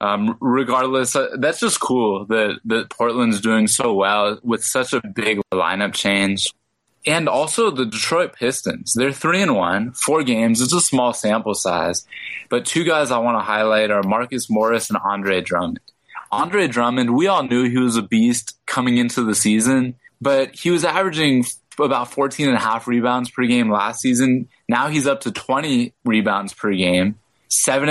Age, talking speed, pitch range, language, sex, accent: 20-39, 170 wpm, 105-125 Hz, English, male, American